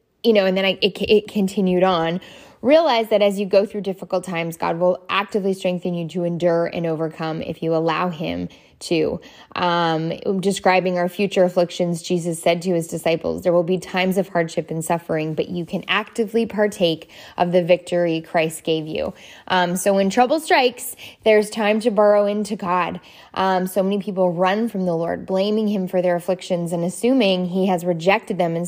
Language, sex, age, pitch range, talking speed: English, female, 10-29, 170-205 Hz, 190 wpm